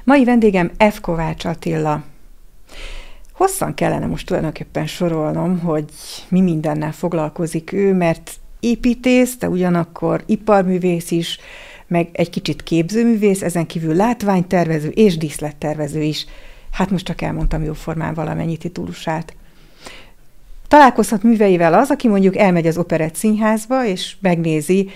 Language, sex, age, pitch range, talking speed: Hungarian, female, 60-79, 155-205 Hz, 120 wpm